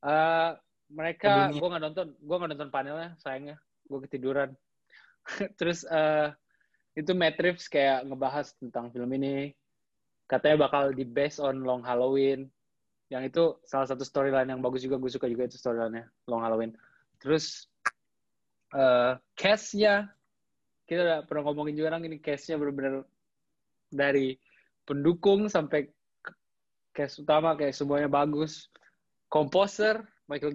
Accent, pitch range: native, 135-165 Hz